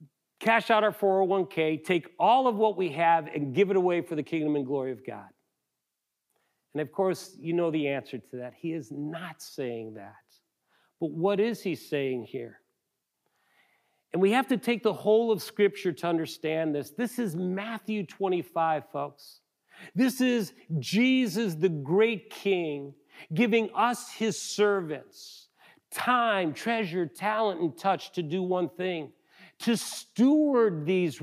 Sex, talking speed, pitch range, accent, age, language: male, 155 wpm, 155-215 Hz, American, 40-59, English